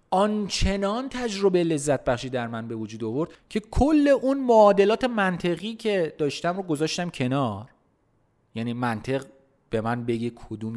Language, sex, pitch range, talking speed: Persian, male, 125-195 Hz, 140 wpm